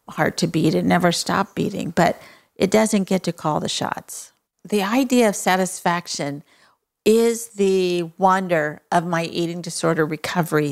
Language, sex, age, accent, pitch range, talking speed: English, female, 50-69, American, 165-195 Hz, 150 wpm